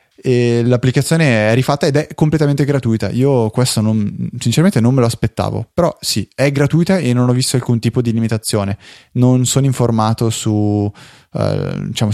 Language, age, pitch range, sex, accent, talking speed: Italian, 20-39, 110-125 Hz, male, native, 170 wpm